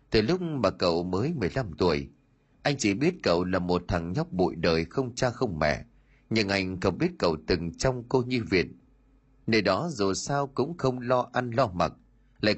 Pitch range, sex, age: 95-135 Hz, male, 30-49